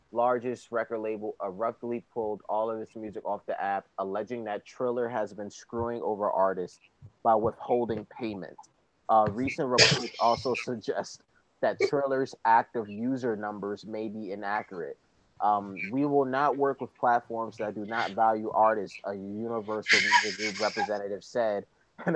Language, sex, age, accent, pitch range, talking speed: English, male, 30-49, American, 110-130 Hz, 150 wpm